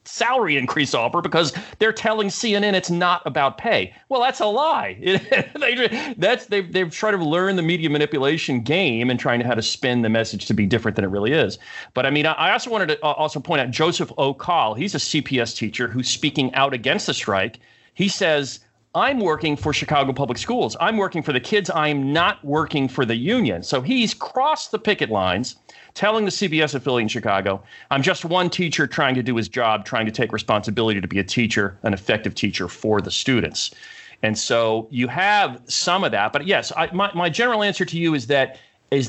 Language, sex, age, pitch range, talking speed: English, male, 40-59, 125-185 Hz, 210 wpm